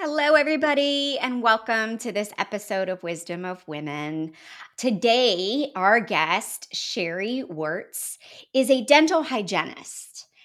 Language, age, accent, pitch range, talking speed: English, 30-49, American, 220-305 Hz, 115 wpm